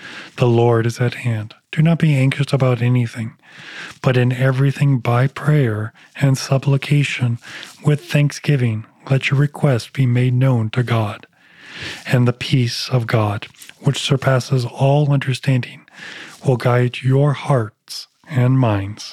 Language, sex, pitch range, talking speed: English, male, 120-140 Hz, 135 wpm